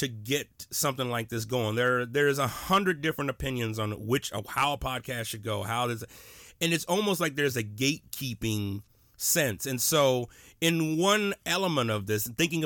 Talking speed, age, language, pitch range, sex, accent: 175 wpm, 30-49, English, 110-160 Hz, male, American